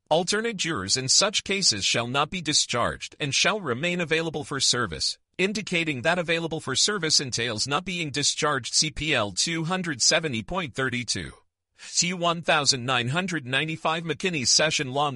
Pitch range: 130-175 Hz